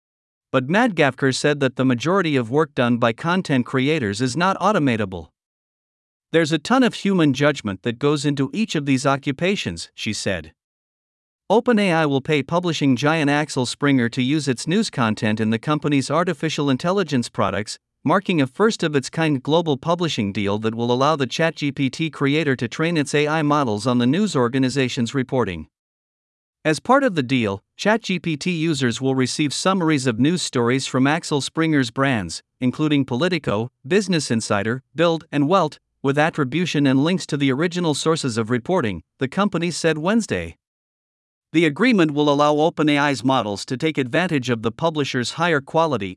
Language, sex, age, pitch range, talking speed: Vietnamese, male, 50-69, 125-165 Hz, 160 wpm